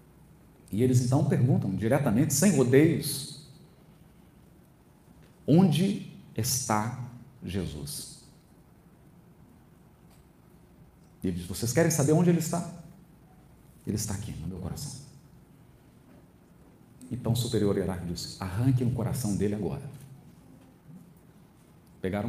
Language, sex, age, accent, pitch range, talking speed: Portuguese, male, 50-69, Brazilian, 125-155 Hz, 95 wpm